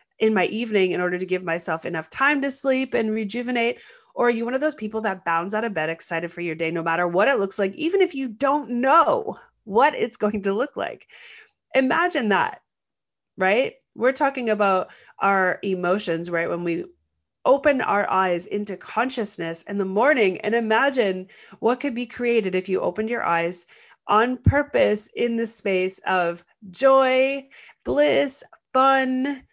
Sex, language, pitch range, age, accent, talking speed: female, English, 185-260 Hz, 30-49, American, 175 wpm